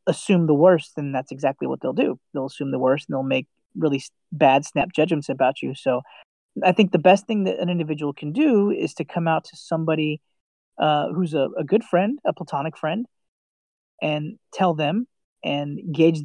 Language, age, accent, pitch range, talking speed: English, 30-49, American, 150-175 Hz, 195 wpm